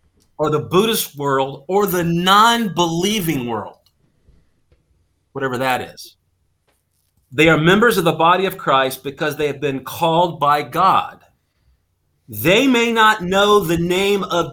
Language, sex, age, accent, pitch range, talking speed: English, male, 40-59, American, 125-180 Hz, 135 wpm